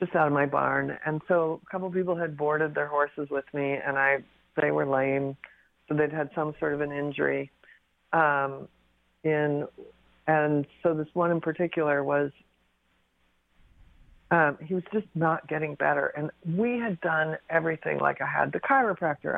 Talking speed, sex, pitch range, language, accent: 175 wpm, female, 145-175 Hz, English, American